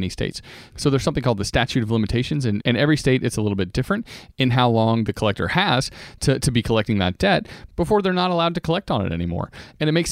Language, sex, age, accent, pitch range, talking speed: English, male, 30-49, American, 110-135 Hz, 255 wpm